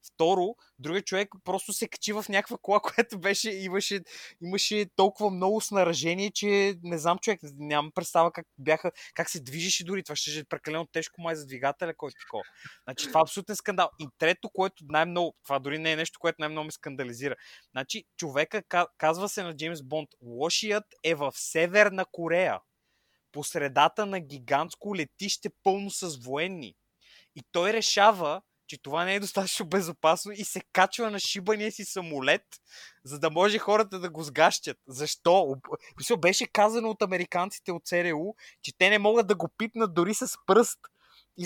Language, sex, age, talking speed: Bulgarian, male, 20-39, 165 wpm